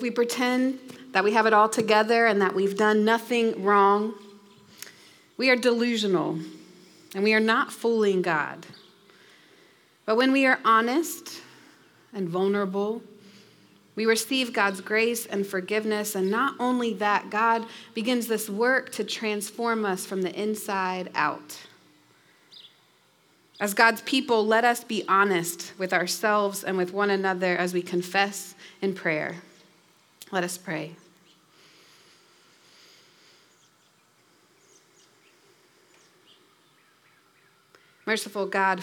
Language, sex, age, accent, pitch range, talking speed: English, female, 30-49, American, 190-230 Hz, 115 wpm